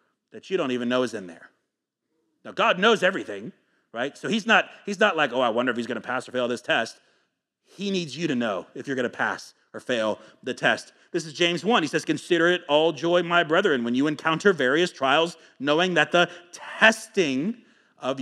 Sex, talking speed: male, 215 wpm